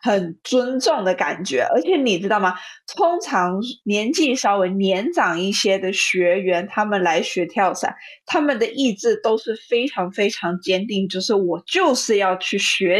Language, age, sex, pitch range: Chinese, 20-39, female, 185-245 Hz